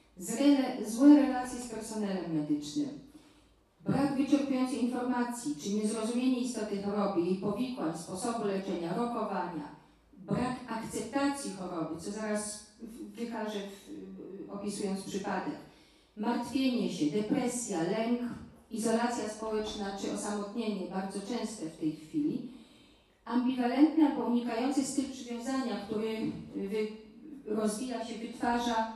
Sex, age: female, 40-59